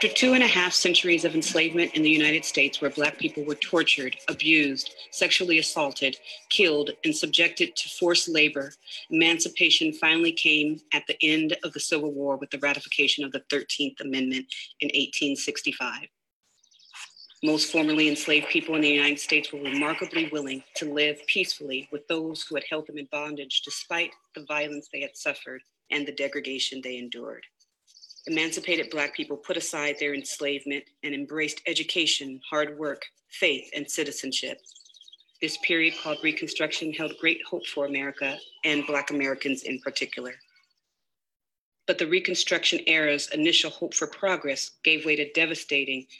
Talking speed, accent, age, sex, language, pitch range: 155 wpm, American, 40-59, female, English, 145-165 Hz